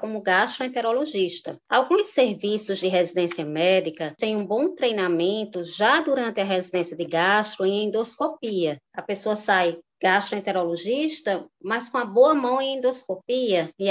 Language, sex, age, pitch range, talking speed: Portuguese, female, 20-39, 180-240 Hz, 135 wpm